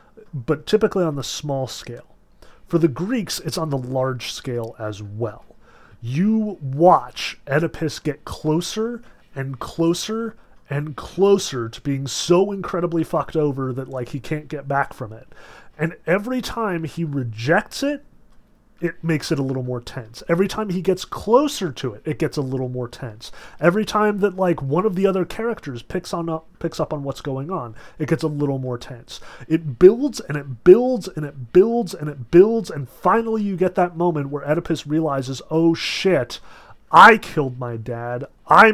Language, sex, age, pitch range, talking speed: English, male, 30-49, 125-170 Hz, 180 wpm